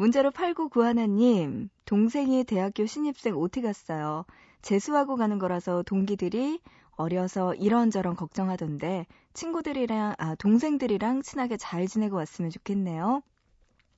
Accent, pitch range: native, 180-245 Hz